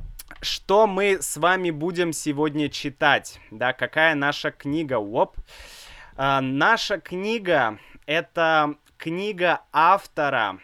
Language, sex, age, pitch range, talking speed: Russian, male, 20-39, 135-170 Hz, 95 wpm